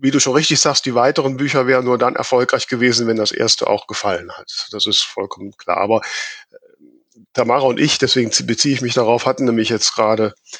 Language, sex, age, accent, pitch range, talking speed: German, male, 50-69, German, 115-135 Hz, 205 wpm